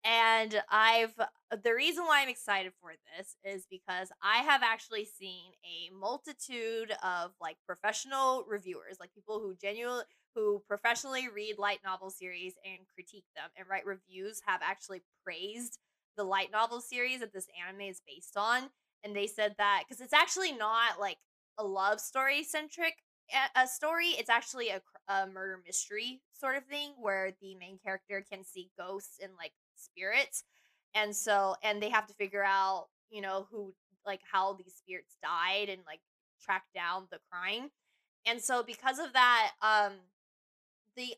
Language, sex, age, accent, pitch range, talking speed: English, female, 20-39, American, 190-235 Hz, 165 wpm